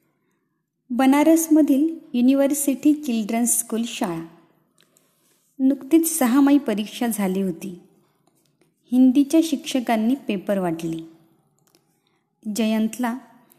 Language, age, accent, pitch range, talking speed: Marathi, 20-39, native, 200-270 Hz, 75 wpm